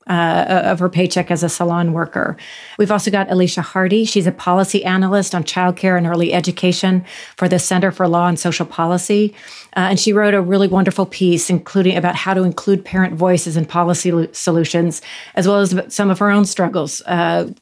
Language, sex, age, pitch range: English, female, 40-59, 170-190 Hz